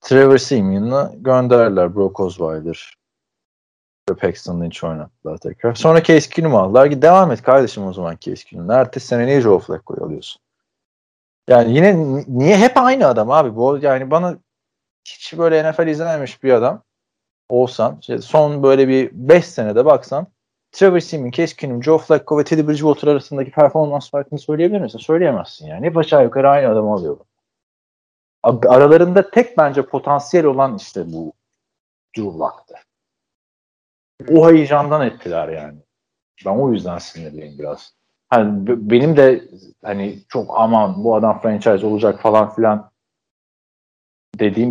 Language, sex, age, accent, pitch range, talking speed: Turkish, male, 40-59, native, 110-160 Hz, 130 wpm